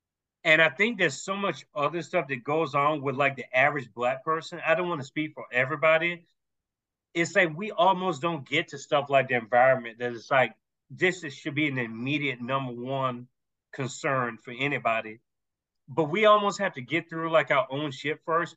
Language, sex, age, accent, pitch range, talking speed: English, male, 40-59, American, 130-170 Hz, 195 wpm